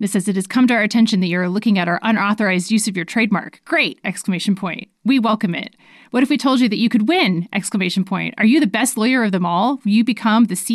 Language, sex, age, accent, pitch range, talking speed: English, female, 30-49, American, 195-240 Hz, 275 wpm